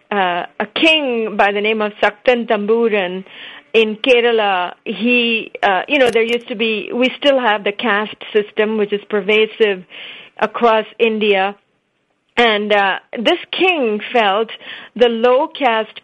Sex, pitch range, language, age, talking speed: female, 210-245 Hz, English, 40-59, 140 wpm